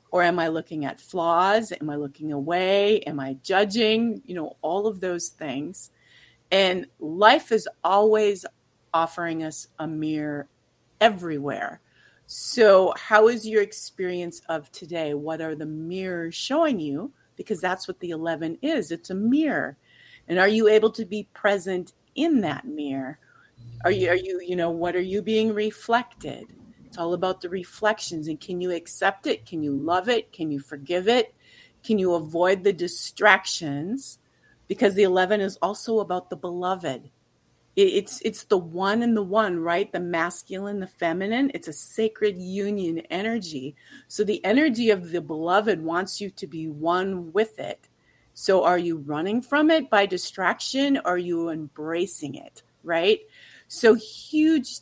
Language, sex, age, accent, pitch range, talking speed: English, female, 40-59, American, 165-215 Hz, 160 wpm